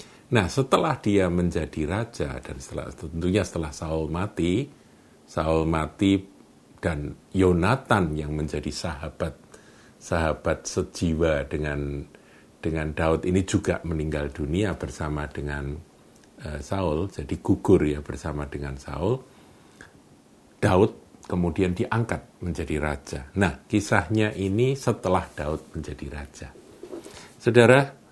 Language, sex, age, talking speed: Indonesian, male, 50-69, 105 wpm